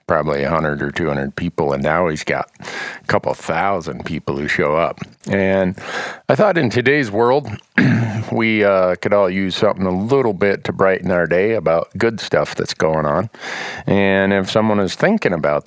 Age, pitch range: 40-59, 80-100 Hz